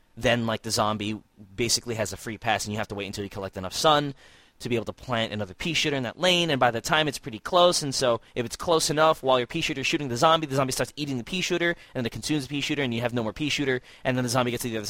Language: English